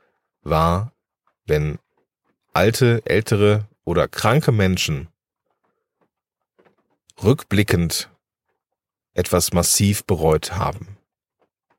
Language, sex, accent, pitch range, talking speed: German, male, German, 85-110 Hz, 60 wpm